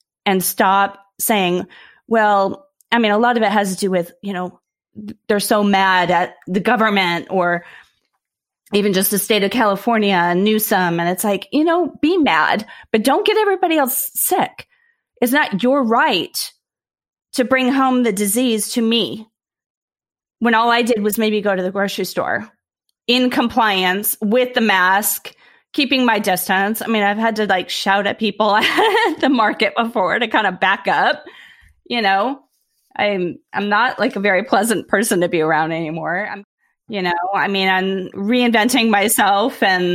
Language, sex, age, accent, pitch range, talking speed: English, female, 30-49, American, 195-245 Hz, 175 wpm